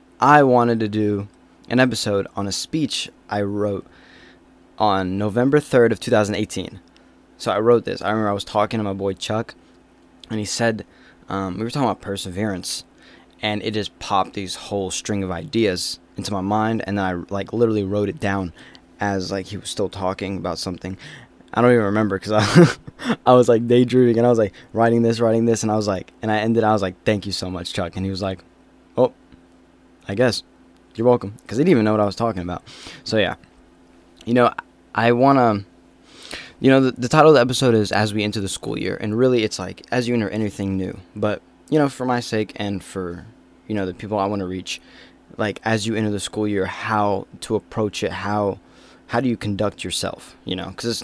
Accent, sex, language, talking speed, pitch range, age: American, male, English, 215 wpm, 95-115 Hz, 10-29